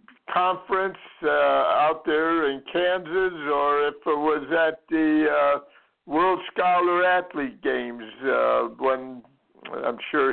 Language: English